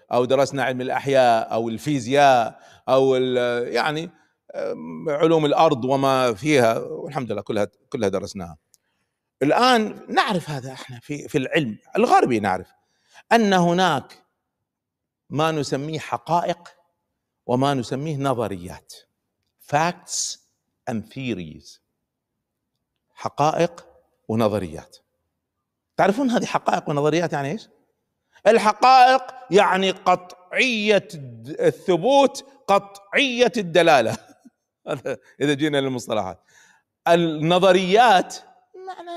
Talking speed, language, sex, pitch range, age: 85 wpm, Arabic, male, 140-235 Hz, 50-69